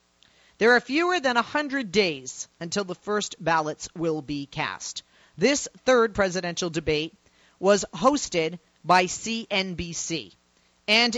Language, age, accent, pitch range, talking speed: English, 40-59, American, 175-245 Hz, 120 wpm